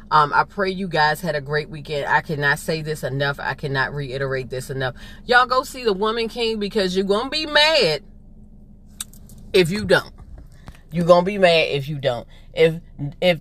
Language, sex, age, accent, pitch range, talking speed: English, female, 30-49, American, 145-190 Hz, 195 wpm